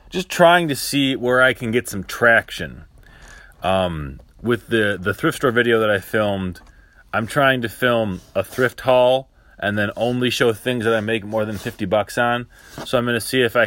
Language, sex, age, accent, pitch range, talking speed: English, male, 30-49, American, 95-120 Hz, 205 wpm